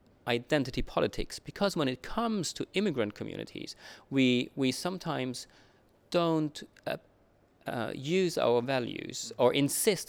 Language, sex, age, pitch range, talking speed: English, male, 30-49, 115-170 Hz, 120 wpm